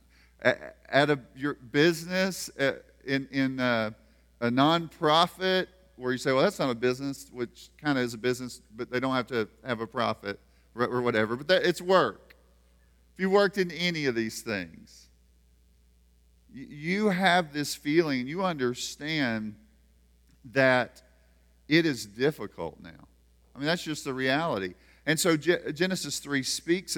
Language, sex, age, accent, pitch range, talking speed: English, male, 40-59, American, 100-160 Hz, 155 wpm